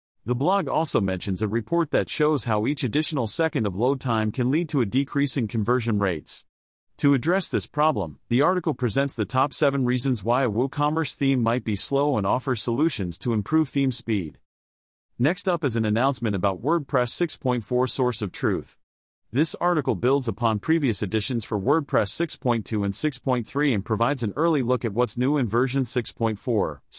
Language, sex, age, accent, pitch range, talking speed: English, male, 40-59, American, 110-145 Hz, 180 wpm